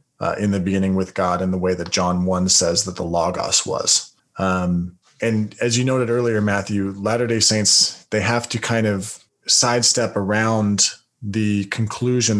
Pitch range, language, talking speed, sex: 95-115 Hz, English, 170 wpm, male